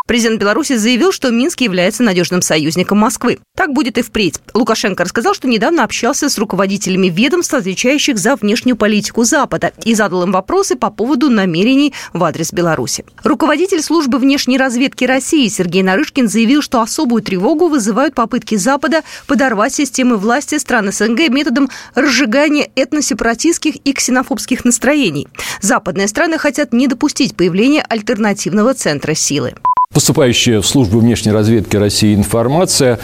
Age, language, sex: 20-39, Russian, female